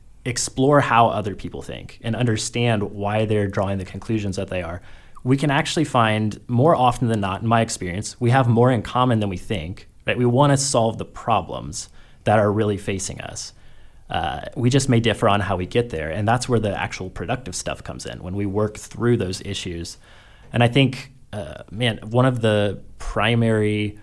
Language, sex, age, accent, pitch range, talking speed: English, male, 30-49, American, 95-115 Hz, 195 wpm